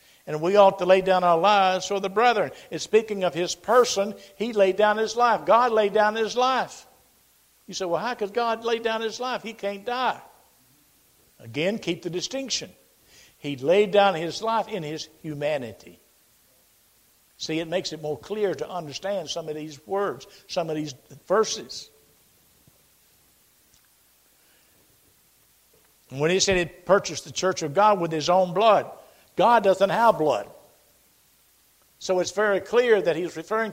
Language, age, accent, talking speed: English, 60-79, American, 165 wpm